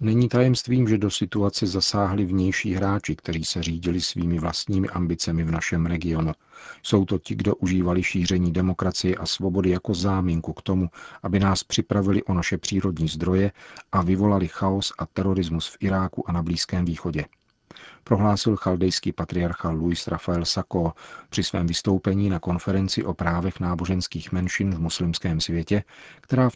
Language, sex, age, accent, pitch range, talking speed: Czech, male, 40-59, native, 85-100 Hz, 155 wpm